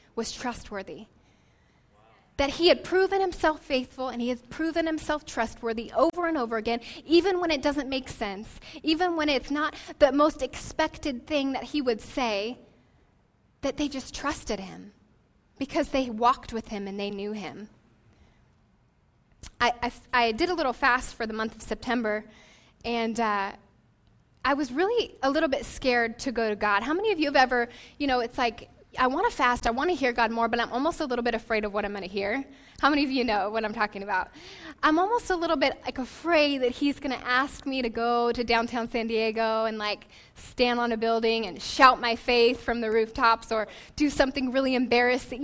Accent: American